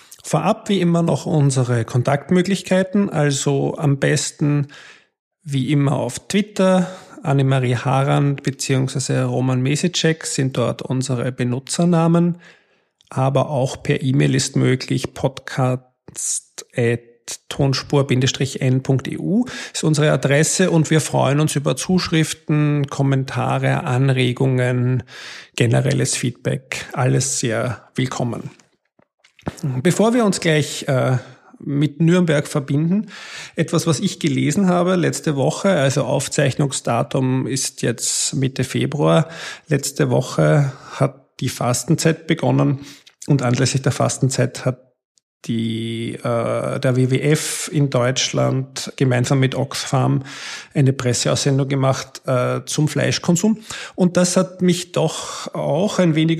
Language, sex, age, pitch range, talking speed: German, male, 50-69, 130-160 Hz, 105 wpm